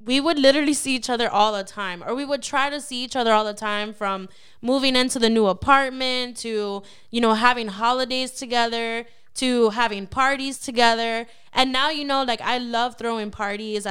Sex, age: female, 10-29